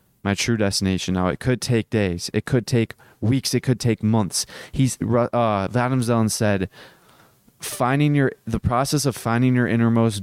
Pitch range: 105-125 Hz